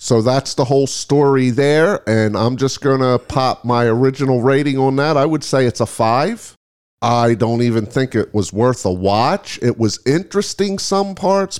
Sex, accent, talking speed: male, American, 190 wpm